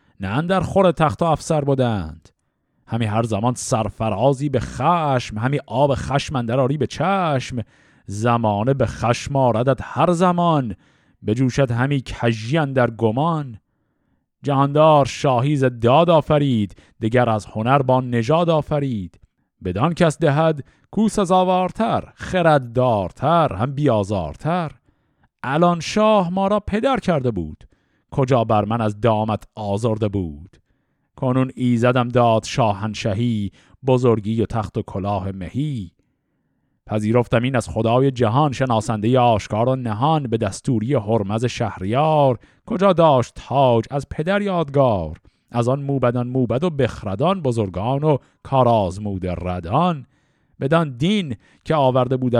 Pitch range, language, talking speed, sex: 110-150 Hz, Persian, 120 wpm, male